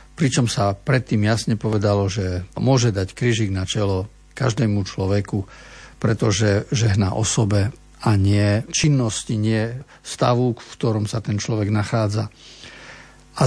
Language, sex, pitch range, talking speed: Slovak, male, 110-135 Hz, 120 wpm